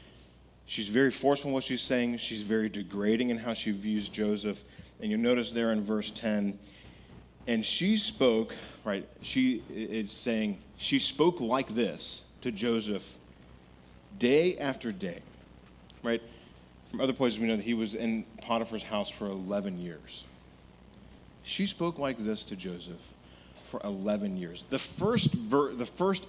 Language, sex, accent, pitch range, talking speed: English, male, American, 95-125 Hz, 155 wpm